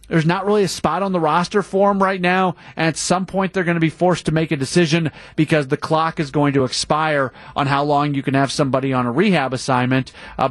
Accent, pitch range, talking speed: American, 135-165 Hz, 250 wpm